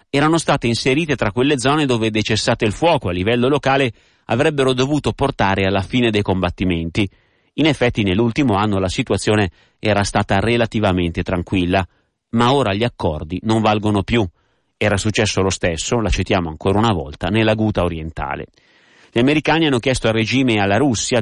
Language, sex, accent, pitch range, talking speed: Italian, male, native, 100-125 Hz, 165 wpm